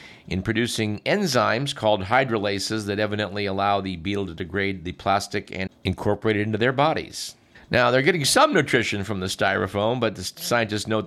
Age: 50-69